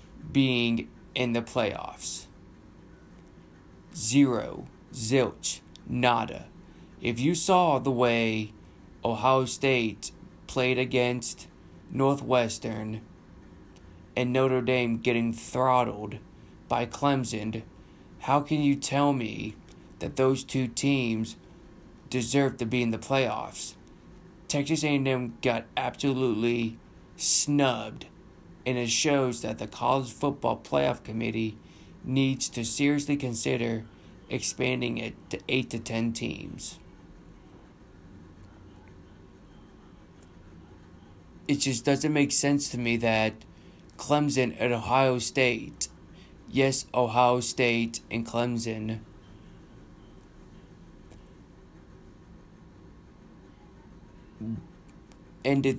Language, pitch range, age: English, 110-135 Hz, 20-39